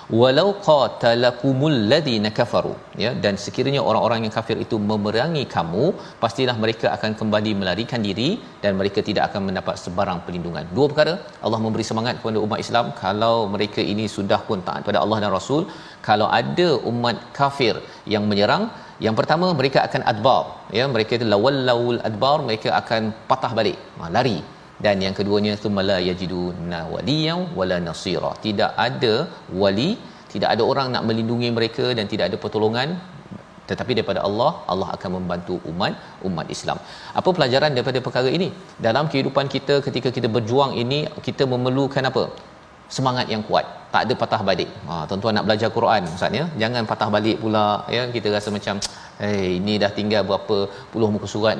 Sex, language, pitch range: male, Malayalam, 105-130 Hz